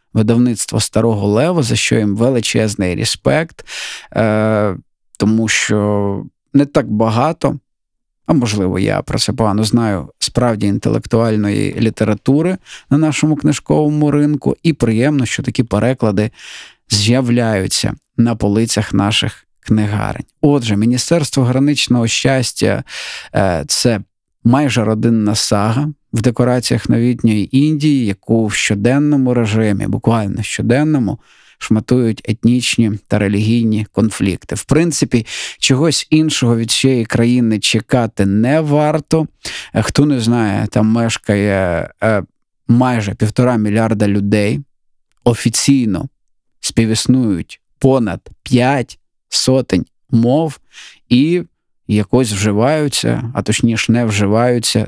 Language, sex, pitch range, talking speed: Ukrainian, male, 105-130 Hz, 100 wpm